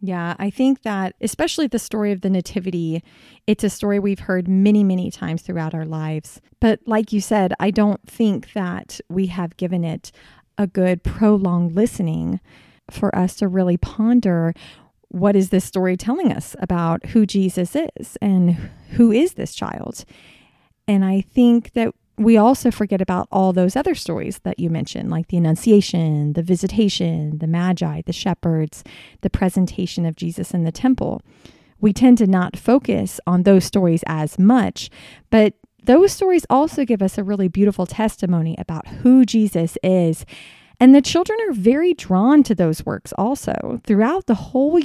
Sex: female